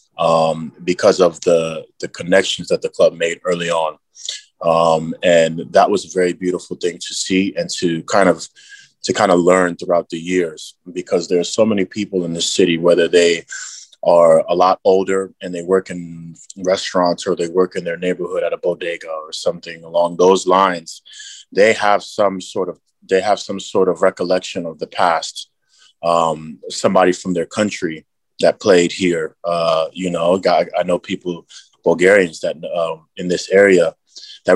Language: English